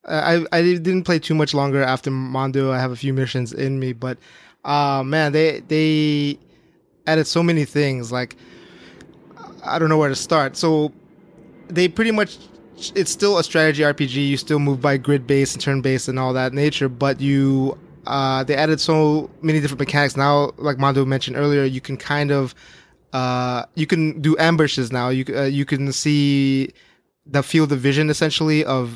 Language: English